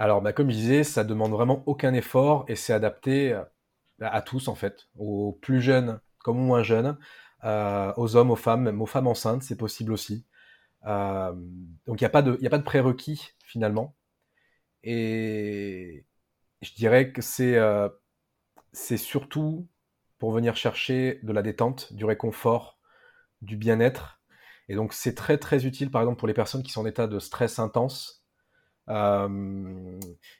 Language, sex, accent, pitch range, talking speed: French, male, French, 110-130 Hz, 165 wpm